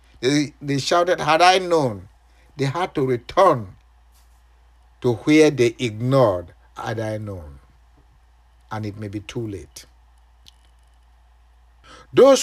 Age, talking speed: 50-69, 115 wpm